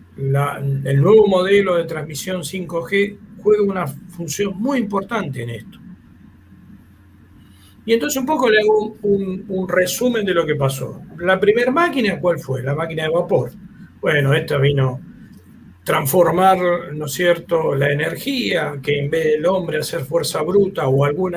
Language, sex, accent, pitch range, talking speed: Spanish, male, Argentinian, 140-200 Hz, 150 wpm